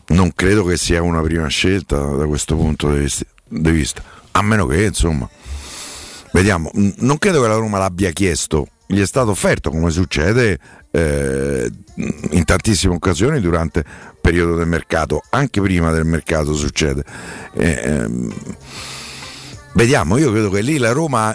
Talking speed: 150 wpm